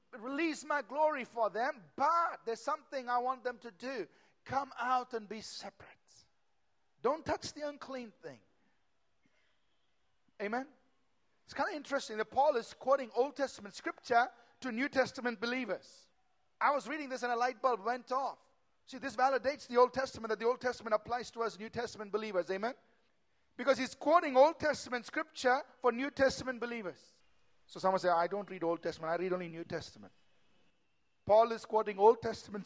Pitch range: 215-270 Hz